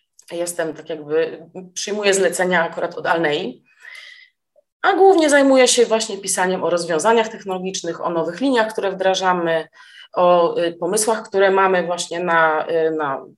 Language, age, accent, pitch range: Polish, 30-49, native, 170-215 Hz